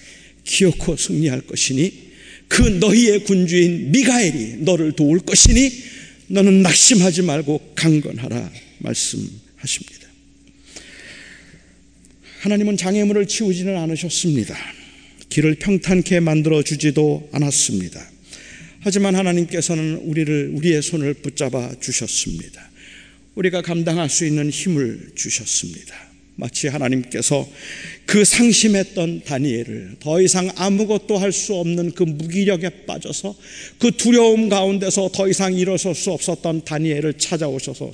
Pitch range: 145-190 Hz